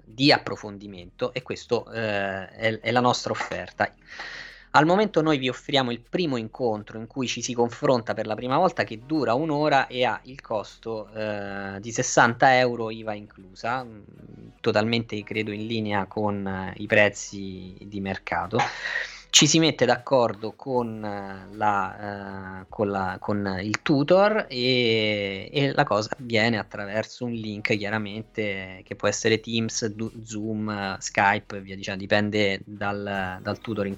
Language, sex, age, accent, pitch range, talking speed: Italian, male, 20-39, native, 100-125 Hz, 150 wpm